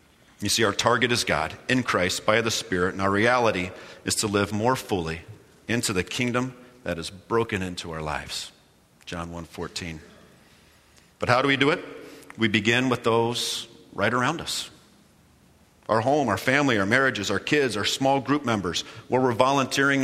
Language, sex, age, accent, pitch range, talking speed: English, male, 40-59, American, 90-120 Hz, 175 wpm